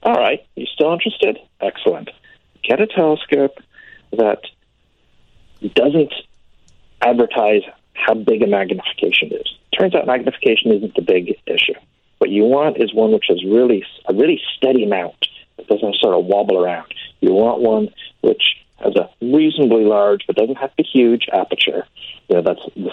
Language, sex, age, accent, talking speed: English, male, 50-69, American, 155 wpm